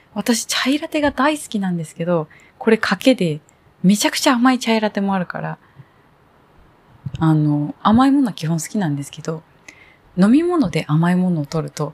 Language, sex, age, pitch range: Japanese, female, 20-39, 160-235 Hz